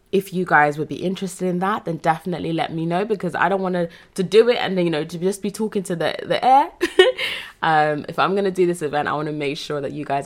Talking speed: 280 wpm